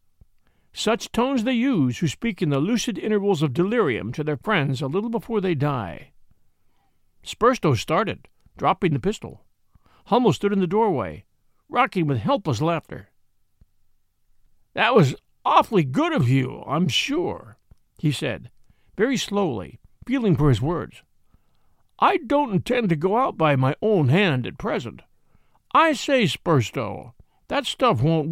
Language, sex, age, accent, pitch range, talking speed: English, male, 60-79, American, 135-230 Hz, 145 wpm